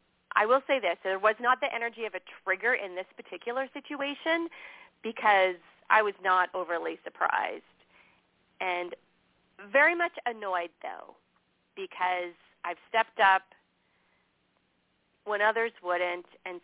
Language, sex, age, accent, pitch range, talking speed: English, female, 40-59, American, 185-235 Hz, 125 wpm